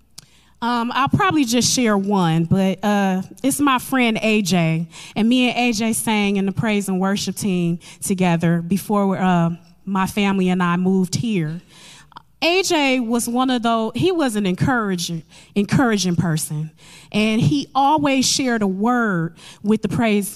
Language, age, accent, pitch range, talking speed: English, 20-39, American, 180-245 Hz, 155 wpm